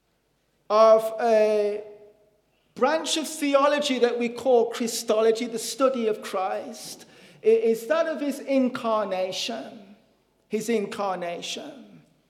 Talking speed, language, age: 100 wpm, English, 50-69